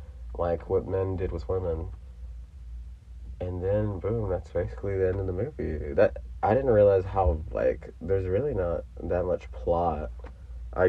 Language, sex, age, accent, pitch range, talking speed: English, male, 30-49, American, 75-95 Hz, 160 wpm